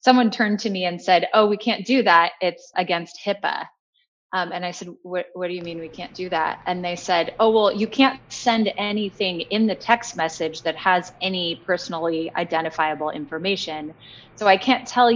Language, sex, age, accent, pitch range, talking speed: English, female, 20-39, American, 175-235 Hz, 195 wpm